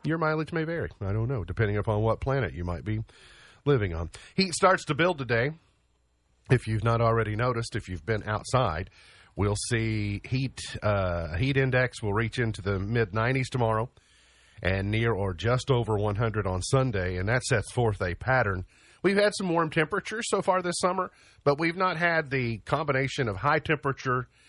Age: 40-59